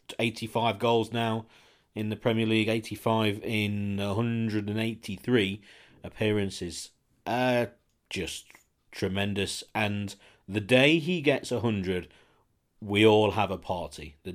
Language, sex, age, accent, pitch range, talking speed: English, male, 40-59, British, 100-120 Hz, 115 wpm